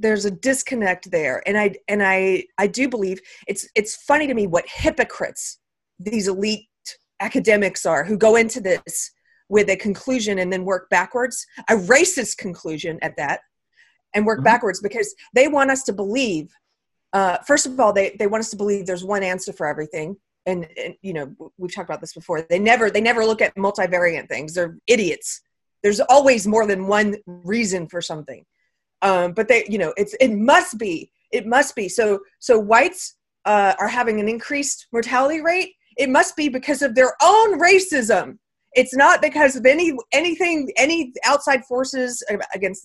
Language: English